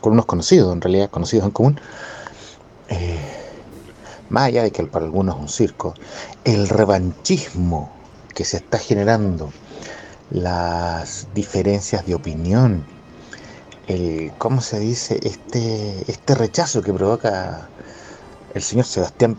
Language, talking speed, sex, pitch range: Spanish, 125 wpm, male, 90-120 Hz